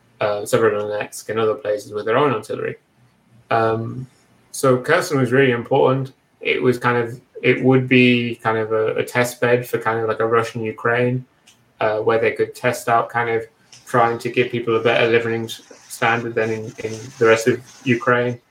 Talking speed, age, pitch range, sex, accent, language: 190 wpm, 20-39, 115-135 Hz, male, British, English